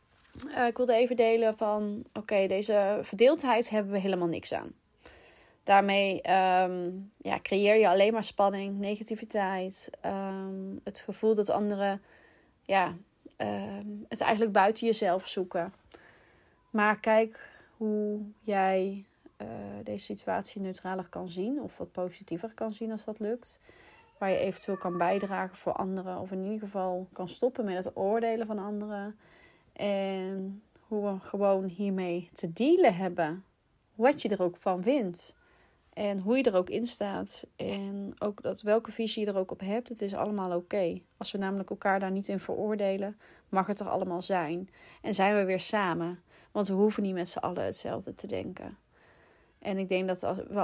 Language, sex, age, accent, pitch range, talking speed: Dutch, female, 30-49, Dutch, 185-215 Hz, 160 wpm